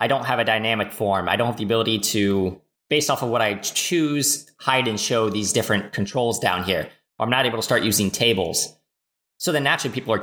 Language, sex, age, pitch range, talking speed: English, male, 20-39, 105-135 Hz, 225 wpm